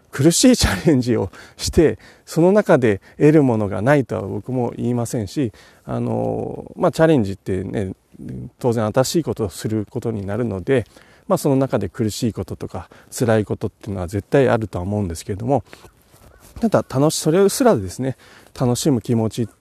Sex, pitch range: male, 105-145 Hz